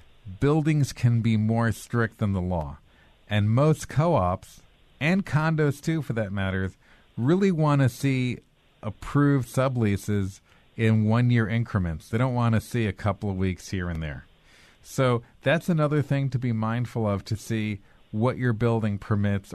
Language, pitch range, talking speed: English, 100-125 Hz, 165 wpm